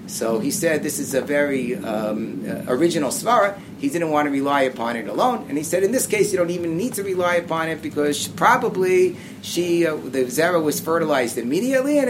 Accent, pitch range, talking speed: American, 130-170 Hz, 220 wpm